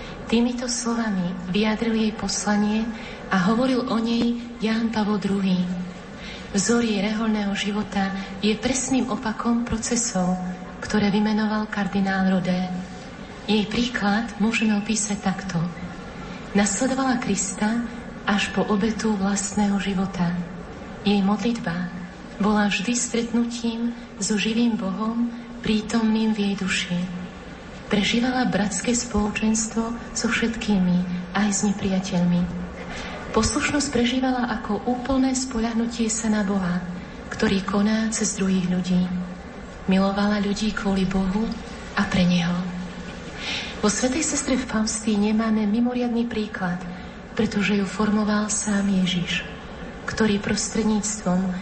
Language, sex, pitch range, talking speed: Slovak, female, 195-230 Hz, 105 wpm